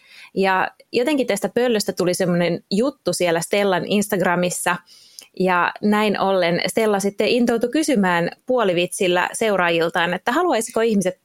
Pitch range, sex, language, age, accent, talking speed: 175-215 Hz, female, Finnish, 20-39, native, 115 wpm